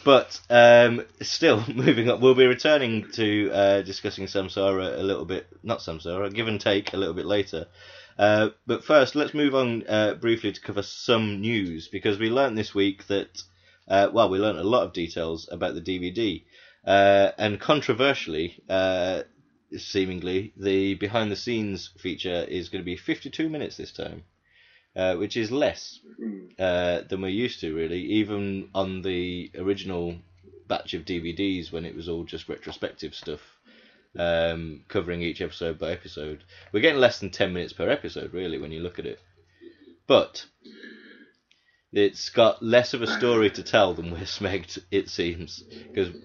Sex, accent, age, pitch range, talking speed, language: male, British, 20-39, 90-110 Hz, 170 wpm, English